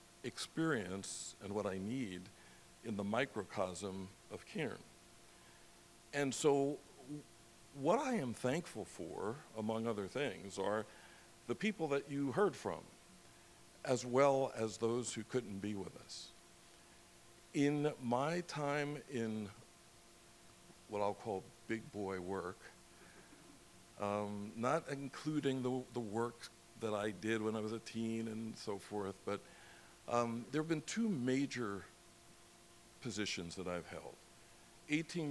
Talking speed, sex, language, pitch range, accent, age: 125 wpm, male, English, 110-145 Hz, American, 60-79